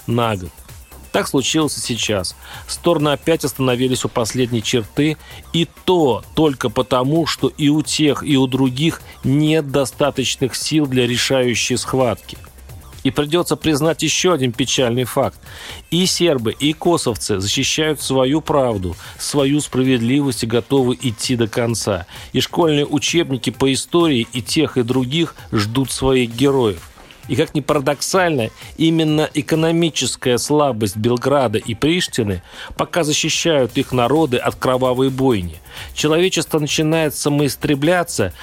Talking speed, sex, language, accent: 130 wpm, male, Russian, native